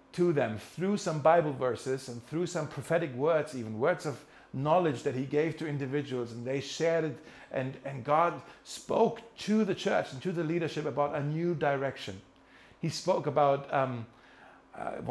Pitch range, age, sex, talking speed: 125-160 Hz, 50-69, male, 175 wpm